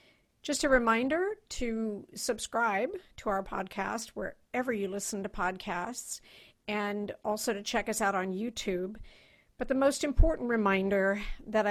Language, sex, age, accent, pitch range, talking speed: English, female, 50-69, American, 185-220 Hz, 140 wpm